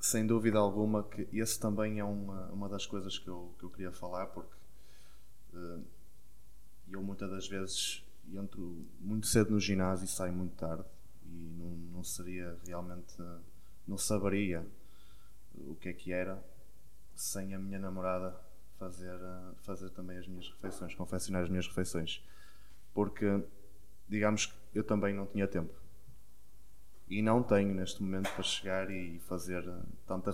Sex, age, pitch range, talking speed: male, 20-39, 90-105 Hz, 145 wpm